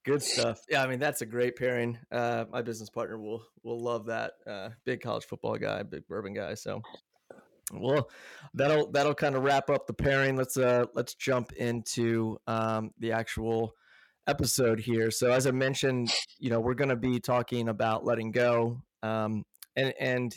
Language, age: English, 20-39